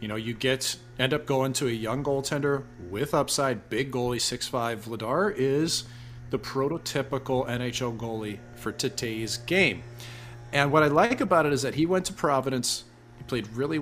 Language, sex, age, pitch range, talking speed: English, male, 40-59, 120-150 Hz, 175 wpm